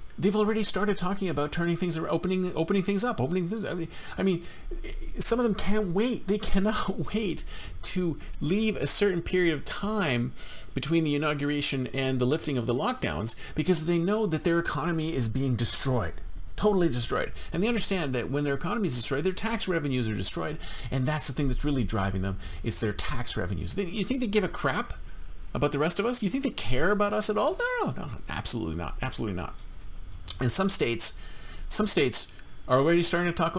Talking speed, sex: 205 wpm, male